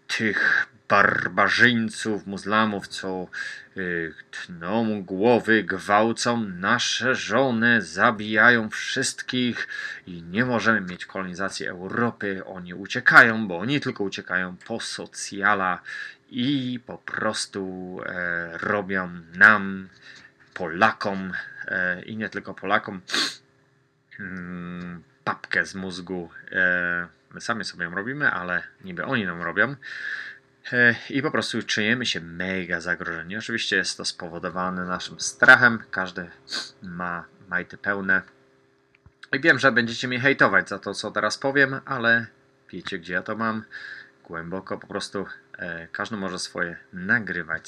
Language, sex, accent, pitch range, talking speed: Polish, male, native, 90-115 Hz, 110 wpm